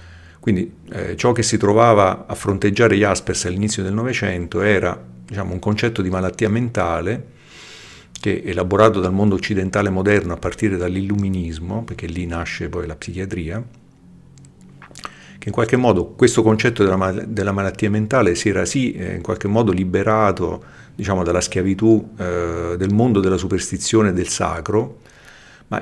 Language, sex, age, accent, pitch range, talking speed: Italian, male, 50-69, native, 90-110 Hz, 140 wpm